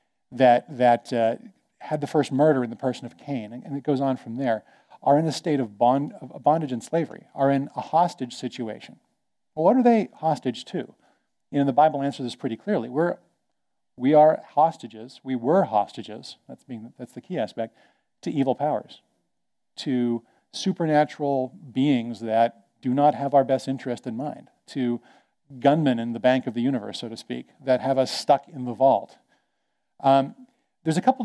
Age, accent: 40-59, American